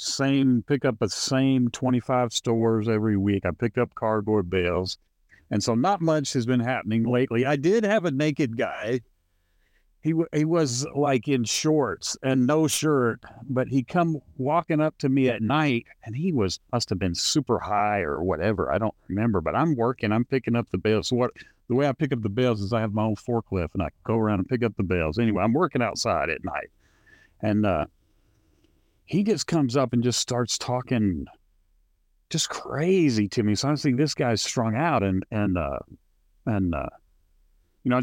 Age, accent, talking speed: 50-69, American, 195 wpm